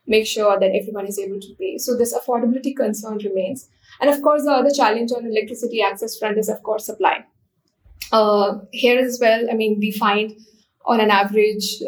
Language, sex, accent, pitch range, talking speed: English, female, Indian, 205-240 Hz, 195 wpm